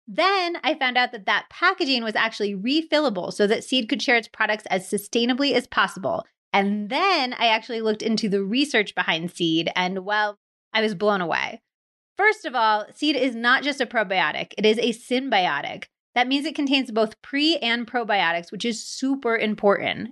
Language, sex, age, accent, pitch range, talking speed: English, female, 30-49, American, 210-275 Hz, 185 wpm